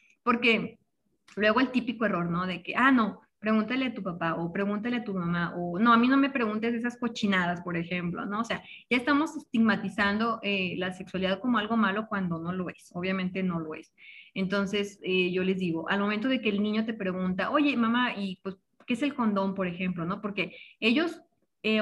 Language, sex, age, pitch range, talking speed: Spanish, female, 20-39, 185-230 Hz, 210 wpm